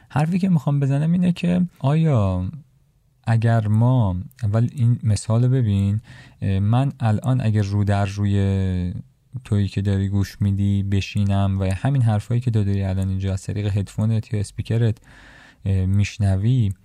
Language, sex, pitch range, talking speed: Persian, male, 95-120 Hz, 135 wpm